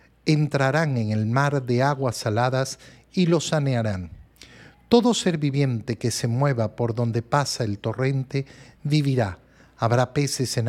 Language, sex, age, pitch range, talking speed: Spanish, male, 50-69, 120-155 Hz, 140 wpm